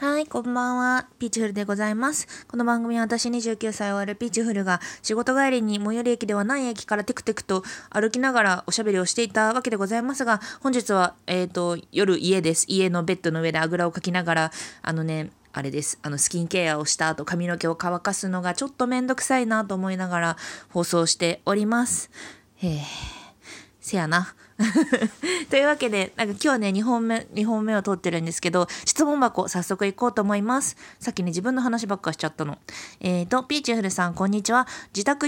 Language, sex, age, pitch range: Japanese, female, 20-39, 180-245 Hz